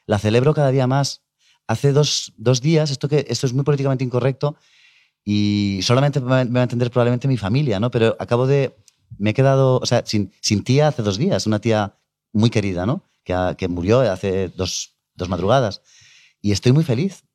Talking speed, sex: 195 wpm, male